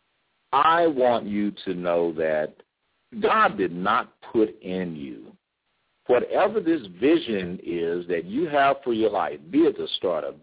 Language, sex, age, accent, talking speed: English, male, 50-69, American, 155 wpm